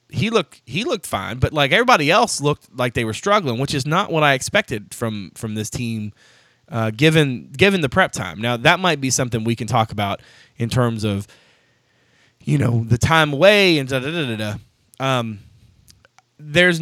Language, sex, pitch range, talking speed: English, male, 115-150 Hz, 195 wpm